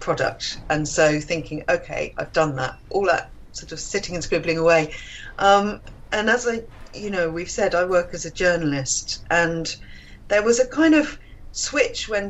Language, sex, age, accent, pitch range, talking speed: English, female, 40-59, British, 150-195 Hz, 180 wpm